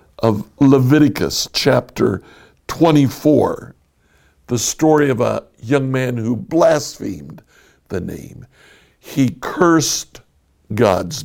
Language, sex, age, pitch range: English, male, 60-79, 100-140 Hz